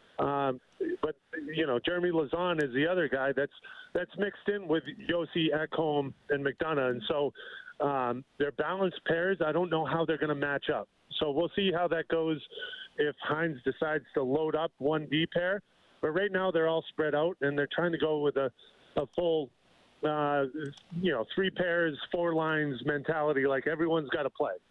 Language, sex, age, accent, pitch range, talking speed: English, male, 40-59, American, 145-180 Hz, 190 wpm